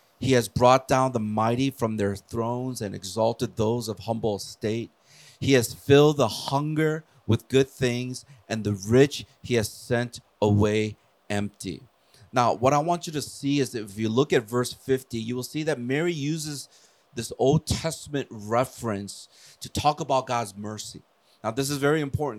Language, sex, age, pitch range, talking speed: English, male, 30-49, 110-140 Hz, 175 wpm